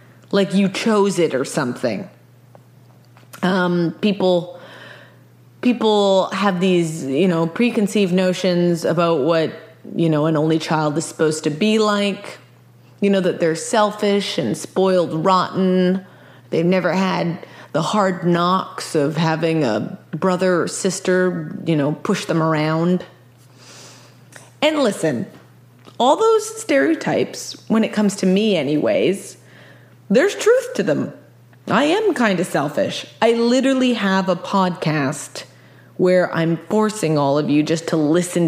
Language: English